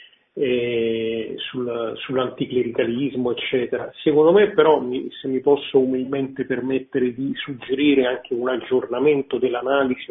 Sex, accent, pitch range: male, native, 125-140 Hz